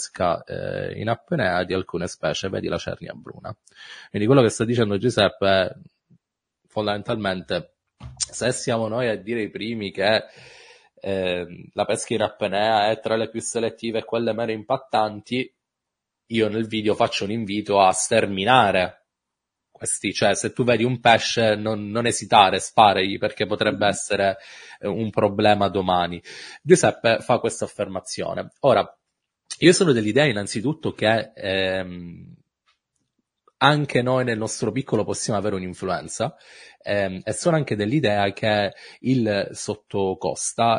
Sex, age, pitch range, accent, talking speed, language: male, 30-49, 95-115 Hz, native, 135 wpm, Italian